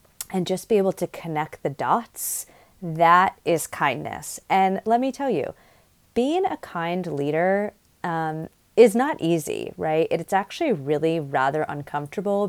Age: 30-49